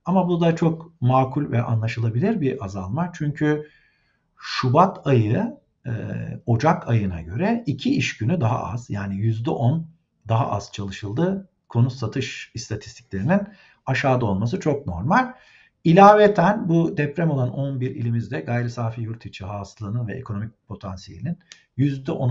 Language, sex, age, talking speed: Turkish, male, 50-69, 120 wpm